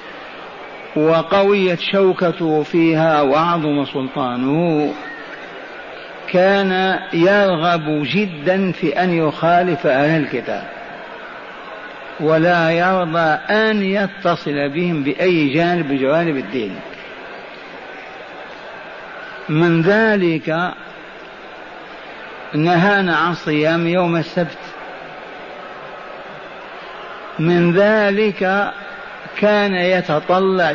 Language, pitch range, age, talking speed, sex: Arabic, 155-185 Hz, 50-69, 65 wpm, male